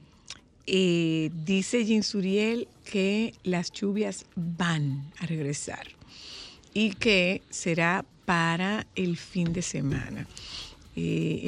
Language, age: Spanish, 50-69